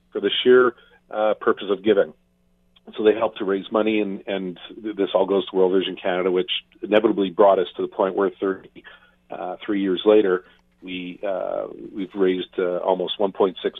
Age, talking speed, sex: 40-59, 190 wpm, male